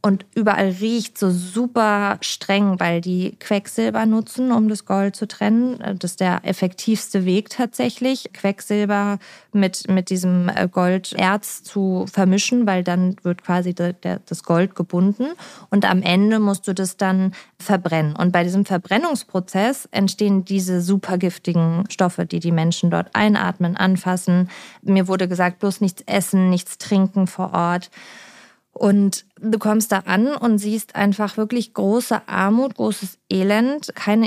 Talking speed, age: 145 wpm, 20-39